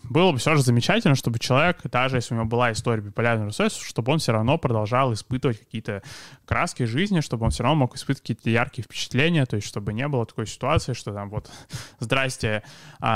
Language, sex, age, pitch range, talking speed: Russian, male, 20-39, 115-135 Hz, 200 wpm